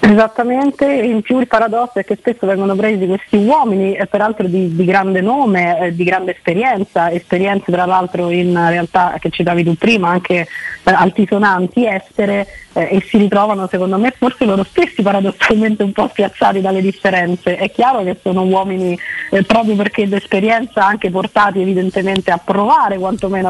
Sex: female